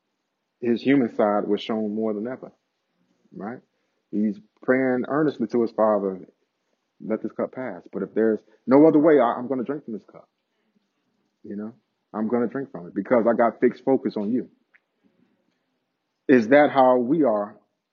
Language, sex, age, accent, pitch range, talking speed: English, male, 30-49, American, 110-130 Hz, 175 wpm